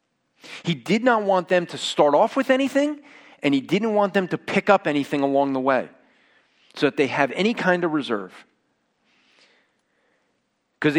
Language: English